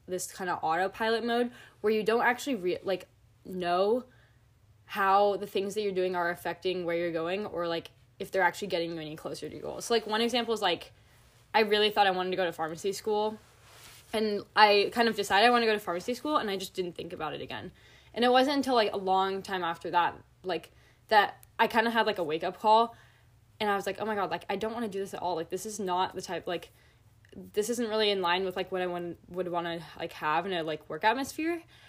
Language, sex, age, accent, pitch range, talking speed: English, female, 10-29, American, 175-220 Hz, 250 wpm